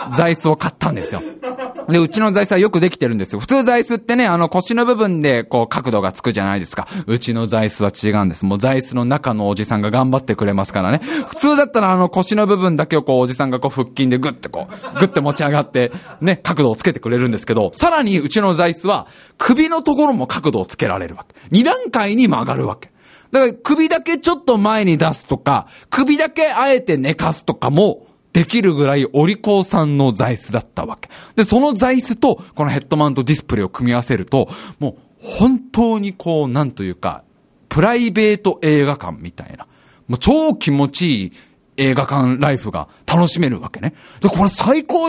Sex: male